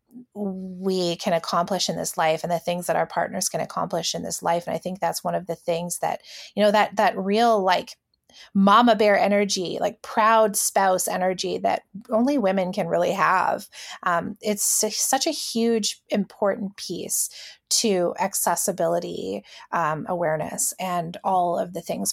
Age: 20-39